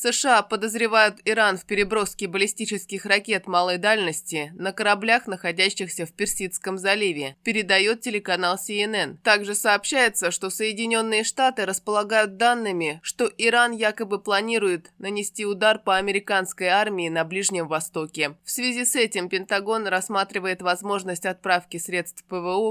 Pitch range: 185-220 Hz